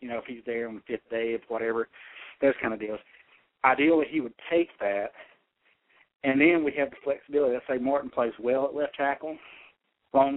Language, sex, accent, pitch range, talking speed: English, male, American, 120-140 Hz, 205 wpm